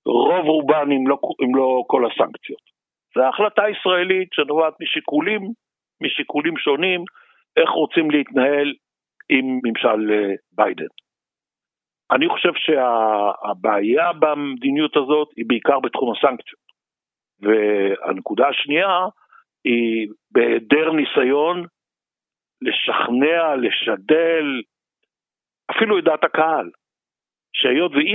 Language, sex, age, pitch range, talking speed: Hebrew, male, 60-79, 130-185 Hz, 85 wpm